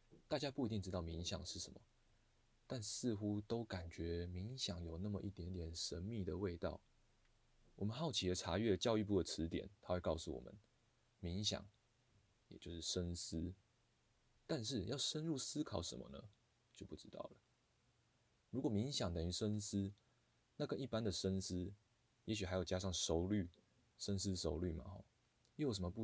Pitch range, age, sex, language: 90-115 Hz, 20-39, male, Chinese